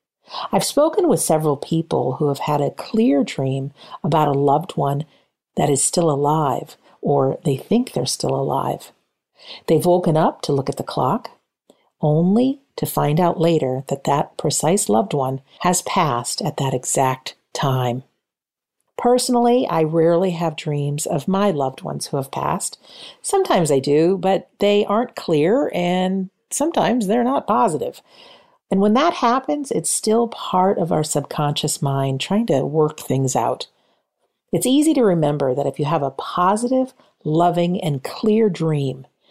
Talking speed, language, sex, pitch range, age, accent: 155 wpm, English, female, 140-210 Hz, 50-69, American